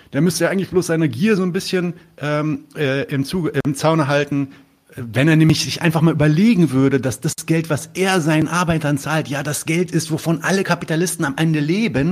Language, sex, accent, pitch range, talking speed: German, male, German, 105-140 Hz, 205 wpm